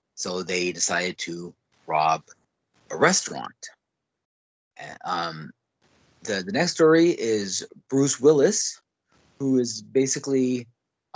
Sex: male